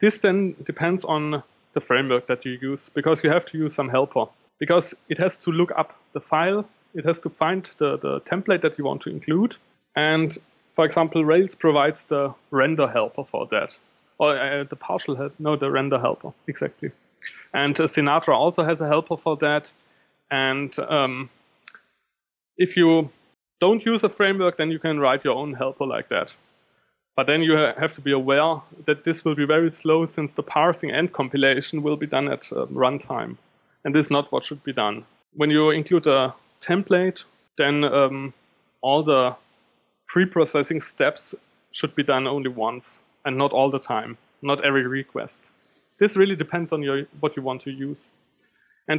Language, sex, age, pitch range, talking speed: English, male, 30-49, 140-175 Hz, 185 wpm